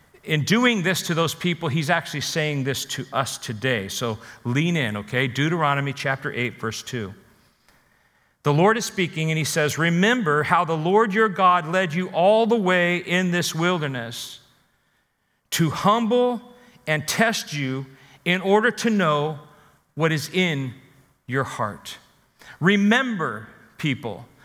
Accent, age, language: American, 40-59, English